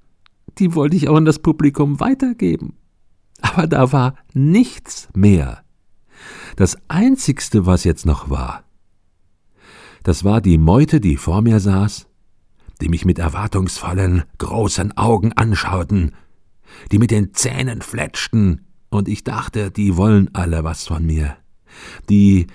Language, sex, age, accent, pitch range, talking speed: German, male, 50-69, German, 85-115 Hz, 135 wpm